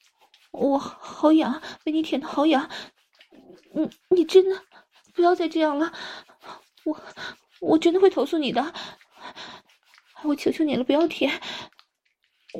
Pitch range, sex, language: 315-380 Hz, female, Chinese